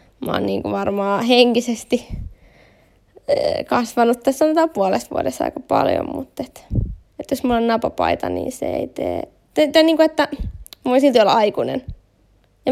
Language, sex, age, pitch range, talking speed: Finnish, female, 20-39, 225-275 Hz, 130 wpm